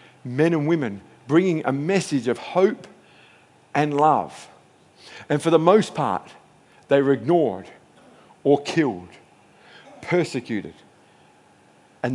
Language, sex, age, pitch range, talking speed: English, male, 50-69, 90-145 Hz, 110 wpm